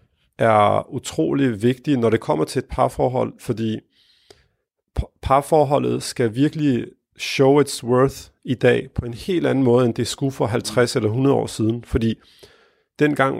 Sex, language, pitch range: male, Danish, 110-135 Hz